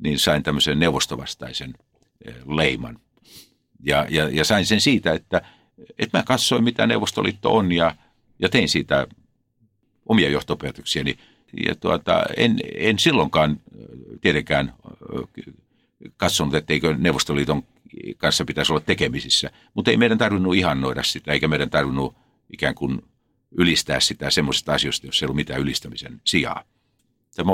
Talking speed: 125 wpm